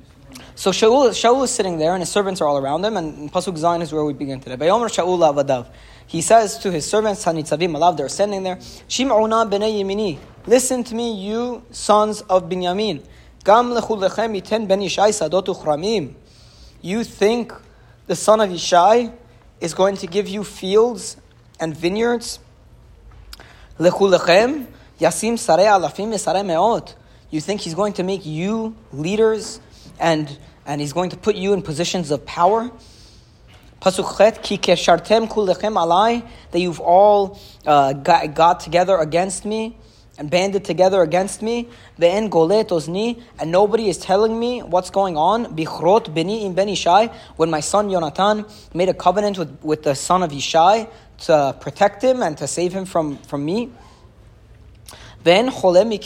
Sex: male